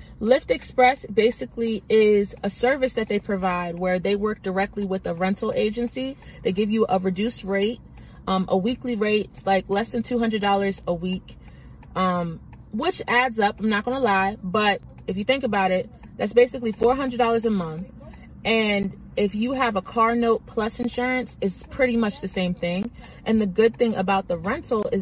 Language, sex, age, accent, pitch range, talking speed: English, female, 20-39, American, 190-230 Hz, 185 wpm